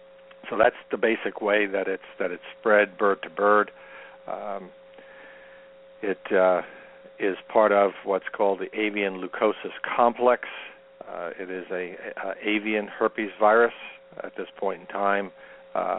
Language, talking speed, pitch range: English, 150 wpm, 95-135 Hz